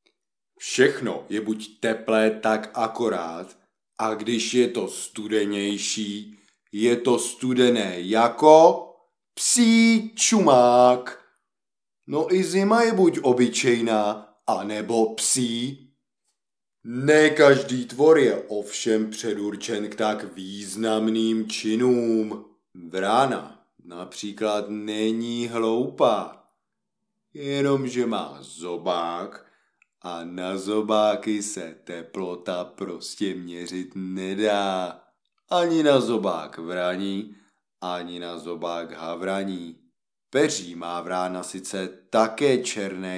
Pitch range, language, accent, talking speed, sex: 95-125 Hz, Czech, native, 90 wpm, male